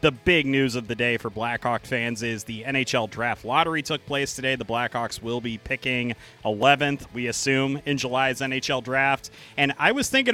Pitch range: 120-140 Hz